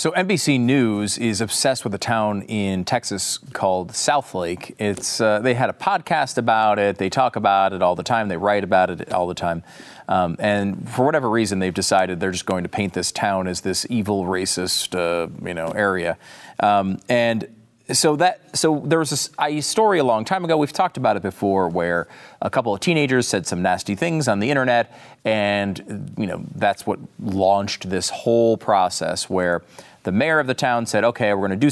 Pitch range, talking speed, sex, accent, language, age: 95-125 Hz, 200 wpm, male, American, English, 40-59